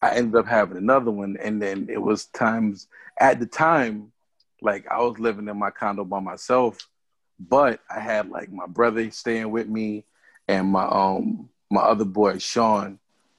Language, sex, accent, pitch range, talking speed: English, male, American, 105-120 Hz, 175 wpm